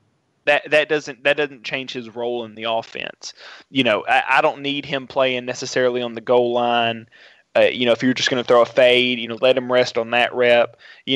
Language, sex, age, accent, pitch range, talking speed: English, male, 20-39, American, 120-135 Hz, 235 wpm